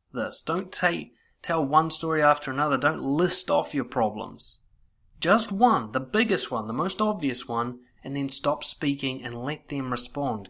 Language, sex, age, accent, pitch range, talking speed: English, male, 30-49, Australian, 110-160 Hz, 170 wpm